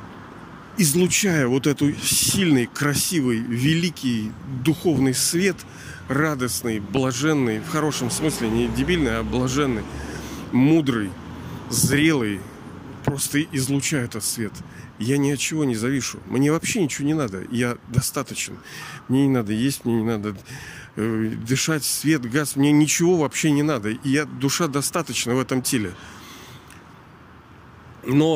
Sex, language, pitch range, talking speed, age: male, Russian, 120-150 Hz, 125 wpm, 40-59